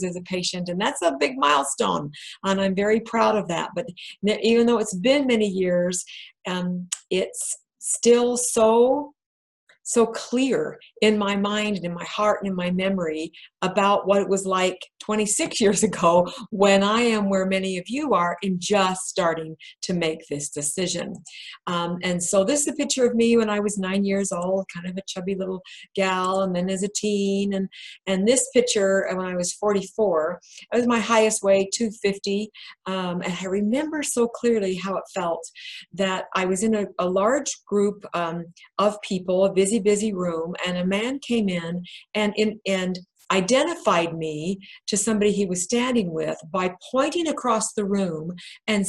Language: English